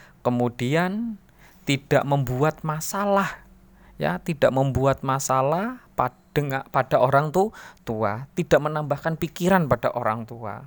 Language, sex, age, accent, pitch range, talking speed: Indonesian, male, 20-39, native, 120-150 Hz, 95 wpm